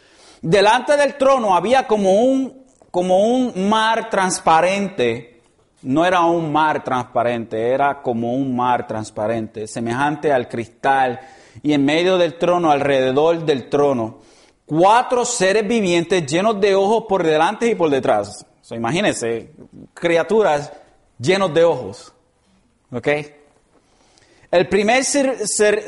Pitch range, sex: 145-220 Hz, male